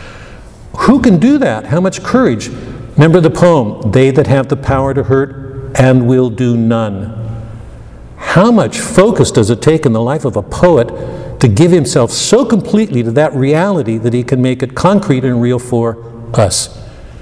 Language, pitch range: English, 115-145 Hz